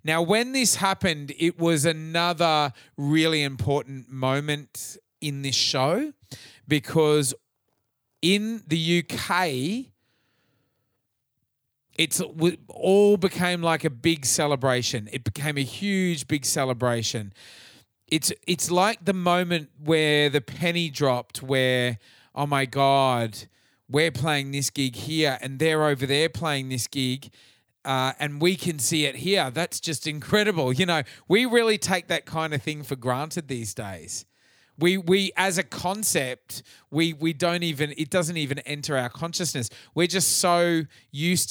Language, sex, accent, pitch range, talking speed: English, male, Australian, 130-170 Hz, 140 wpm